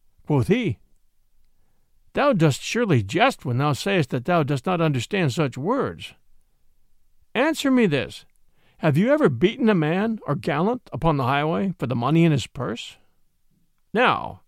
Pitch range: 140-215 Hz